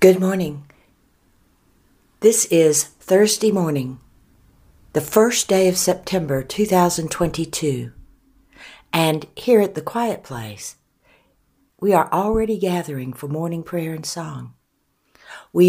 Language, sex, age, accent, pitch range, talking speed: English, female, 60-79, American, 130-175 Hz, 105 wpm